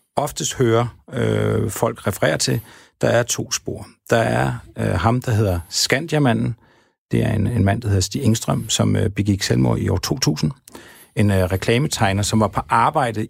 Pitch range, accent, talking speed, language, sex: 100-120 Hz, native, 180 wpm, Danish, male